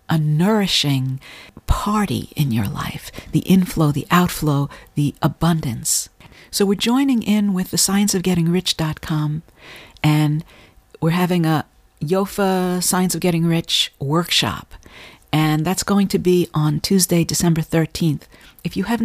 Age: 50-69